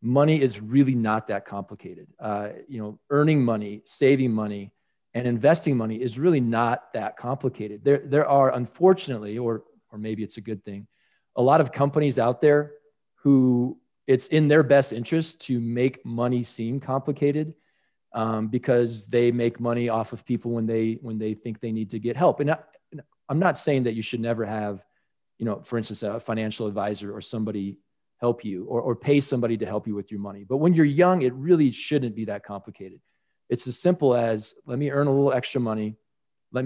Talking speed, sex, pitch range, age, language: 195 wpm, male, 110-140 Hz, 40-59, English